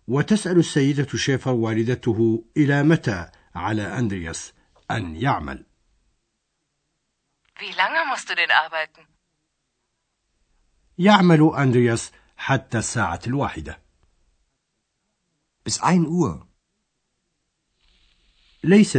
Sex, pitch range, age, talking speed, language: male, 105-155 Hz, 60-79, 55 wpm, Arabic